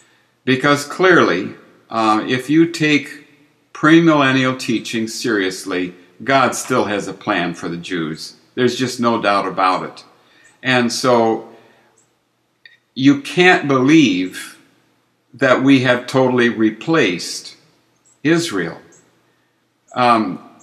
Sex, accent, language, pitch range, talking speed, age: male, American, English, 110-140 Hz, 100 wpm, 60-79